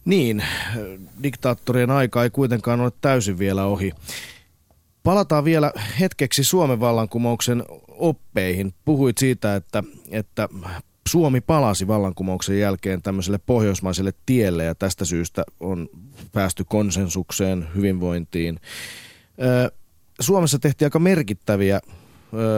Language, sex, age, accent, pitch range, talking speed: Finnish, male, 30-49, native, 95-120 Hz, 100 wpm